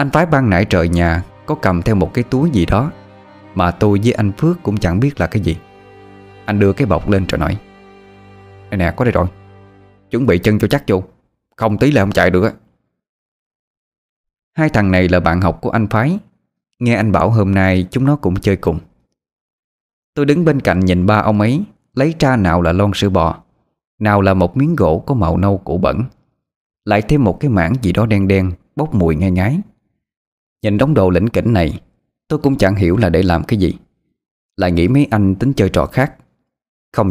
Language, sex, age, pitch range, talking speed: Vietnamese, male, 20-39, 95-120 Hz, 210 wpm